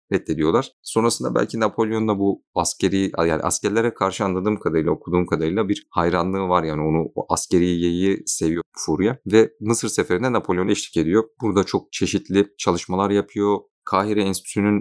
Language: Turkish